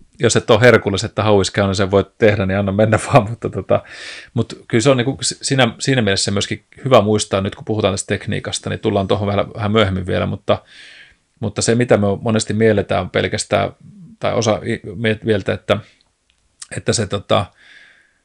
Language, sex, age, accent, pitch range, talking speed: Finnish, male, 30-49, native, 95-110 Hz, 180 wpm